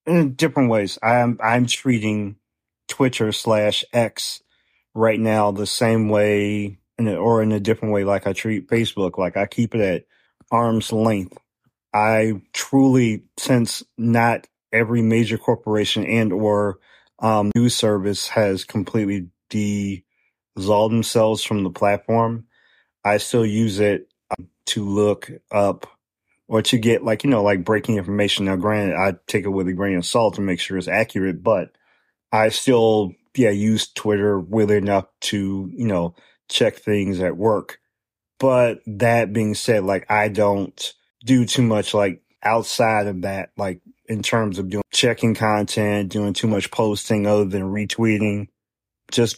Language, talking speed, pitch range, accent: English, 155 wpm, 100-115 Hz, American